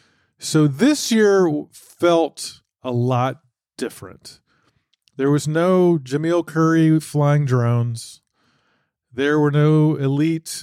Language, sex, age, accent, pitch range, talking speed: English, male, 40-59, American, 125-165 Hz, 100 wpm